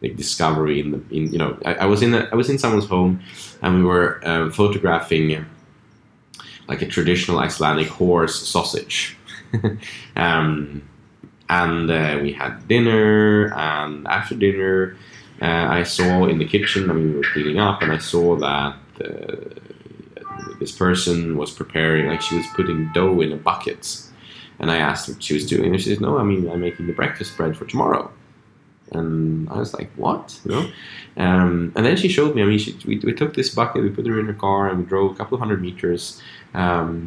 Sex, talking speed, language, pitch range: male, 200 wpm, English, 80-100 Hz